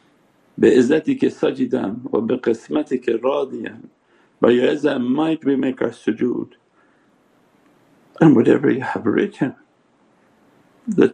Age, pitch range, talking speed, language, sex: 60-79, 115-135 Hz, 115 wpm, English, male